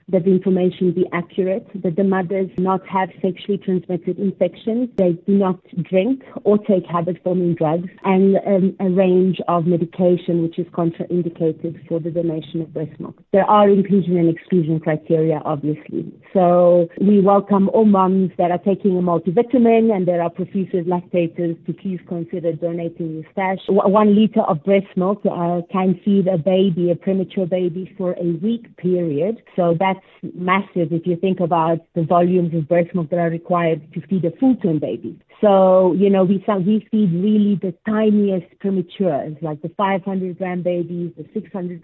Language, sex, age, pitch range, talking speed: English, female, 40-59, 170-195 Hz, 170 wpm